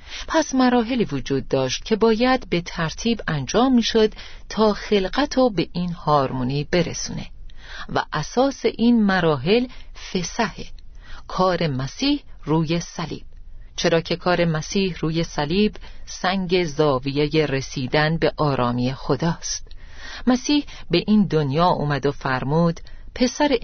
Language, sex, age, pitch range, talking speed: Persian, female, 40-59, 145-210 Hz, 115 wpm